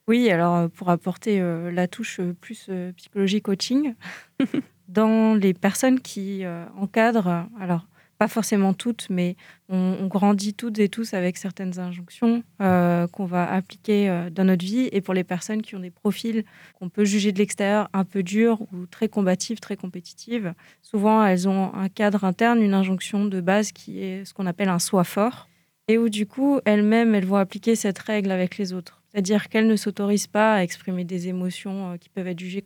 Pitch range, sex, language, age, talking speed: 185-215 Hz, female, French, 20-39, 185 wpm